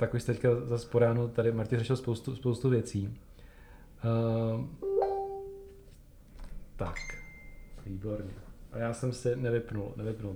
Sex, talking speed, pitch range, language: male, 120 wpm, 110-130 Hz, Czech